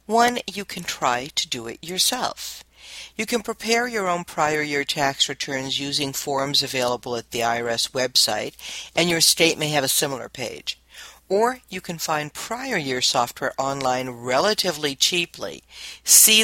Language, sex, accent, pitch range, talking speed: English, female, American, 135-210 Hz, 155 wpm